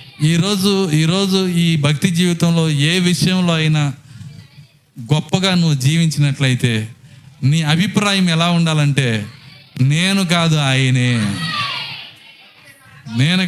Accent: native